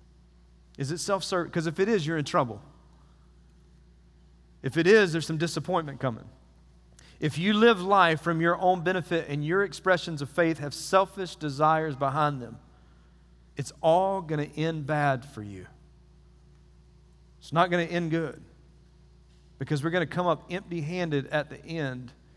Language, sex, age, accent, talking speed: English, male, 40-59, American, 160 wpm